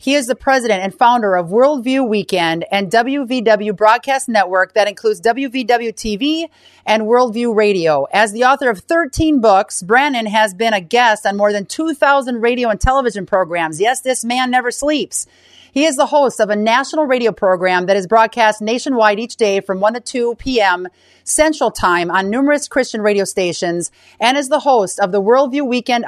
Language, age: English, 40-59